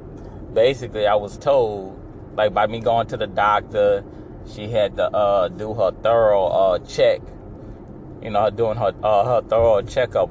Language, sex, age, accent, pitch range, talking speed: English, male, 20-39, American, 100-115 Hz, 165 wpm